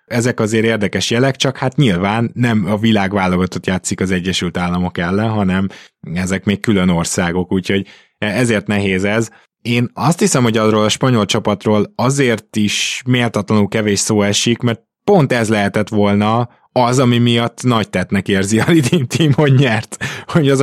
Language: Hungarian